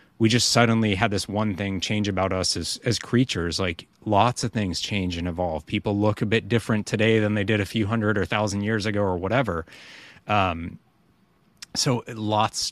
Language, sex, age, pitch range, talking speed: English, male, 30-49, 95-110 Hz, 195 wpm